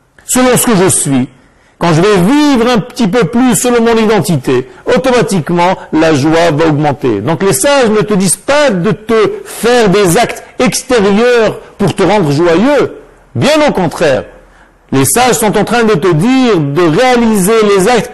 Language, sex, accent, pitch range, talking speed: French, male, French, 150-225 Hz, 175 wpm